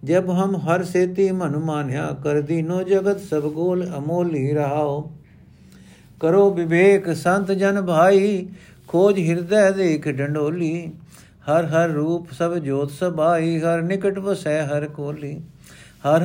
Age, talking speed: 50-69, 120 wpm